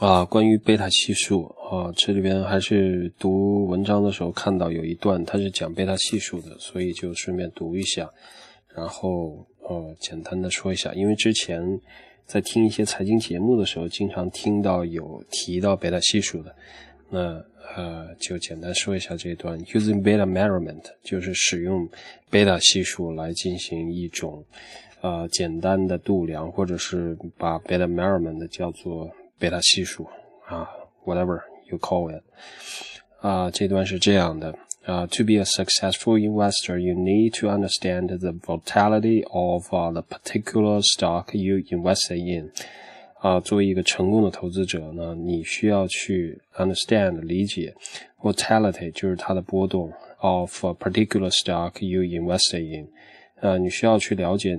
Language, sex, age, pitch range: Chinese, male, 20-39, 85-100 Hz